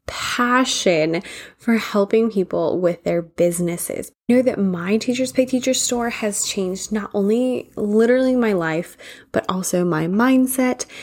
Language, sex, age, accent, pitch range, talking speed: English, female, 20-39, American, 185-245 Hz, 135 wpm